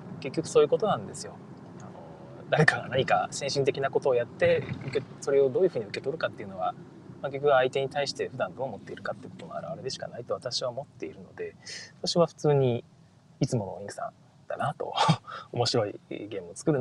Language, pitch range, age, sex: Japanese, 145-210 Hz, 20-39, male